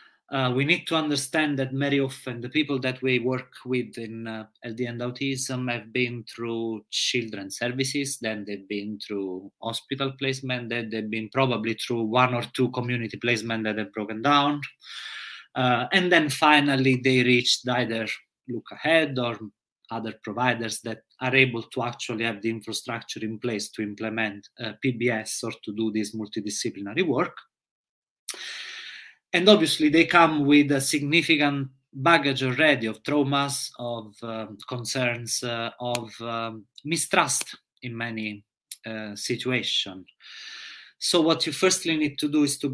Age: 30-49